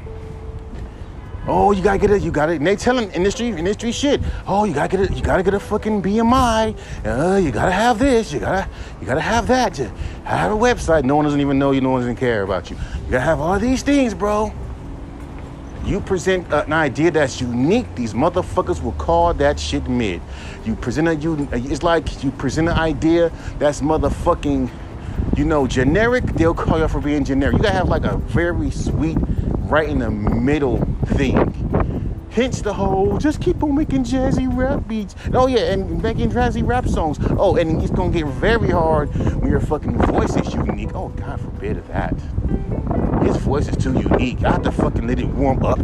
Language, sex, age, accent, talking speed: English, male, 30-49, American, 200 wpm